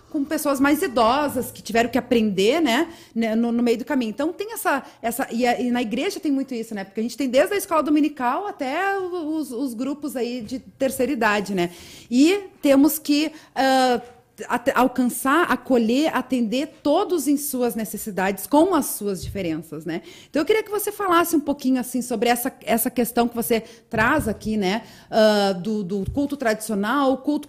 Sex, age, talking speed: female, 40-59, 185 wpm